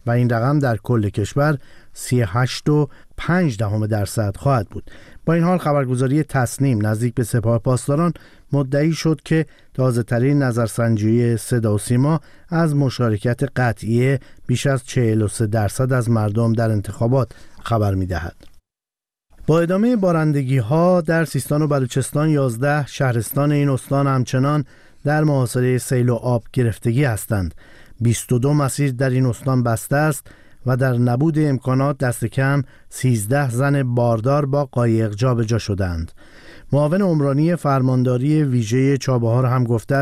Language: Persian